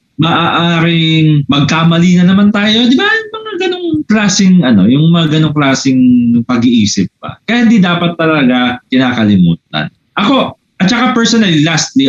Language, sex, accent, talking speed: Filipino, male, native, 140 wpm